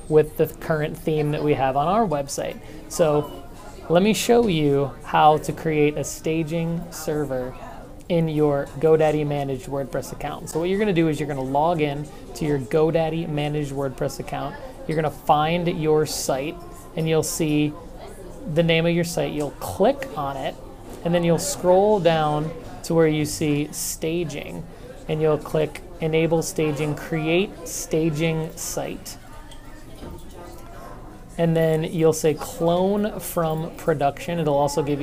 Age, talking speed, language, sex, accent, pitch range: 30-49, 150 wpm, English, male, American, 145-165 Hz